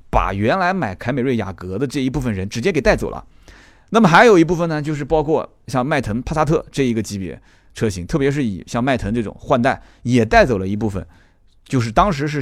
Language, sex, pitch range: Chinese, male, 105-170 Hz